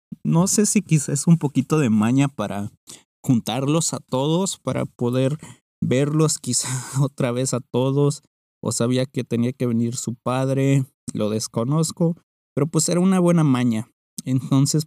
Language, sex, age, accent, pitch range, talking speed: Spanish, male, 20-39, Mexican, 120-150 Hz, 155 wpm